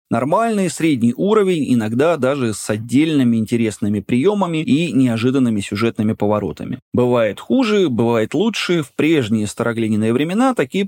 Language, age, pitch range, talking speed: Russian, 30-49, 110-140 Hz, 120 wpm